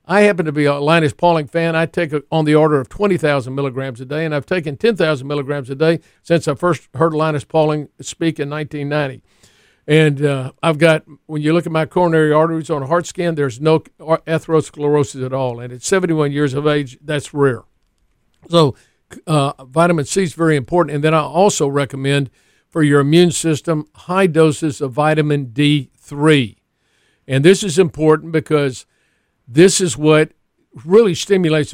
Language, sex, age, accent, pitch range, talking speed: English, male, 50-69, American, 140-165 Hz, 175 wpm